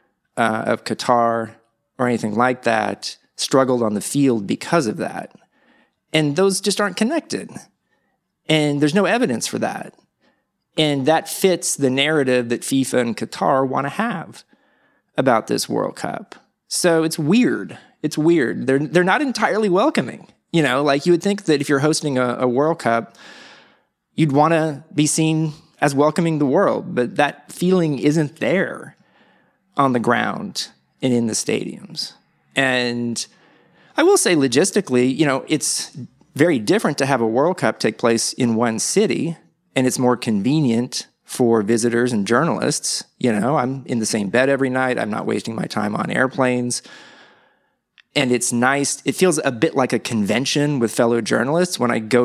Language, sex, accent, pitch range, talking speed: English, male, American, 120-160 Hz, 170 wpm